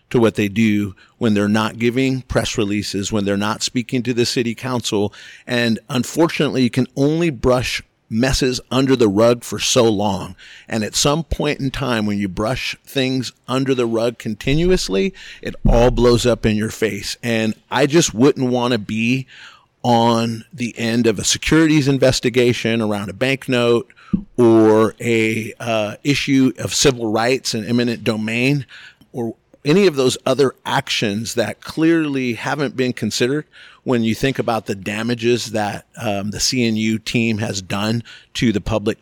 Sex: male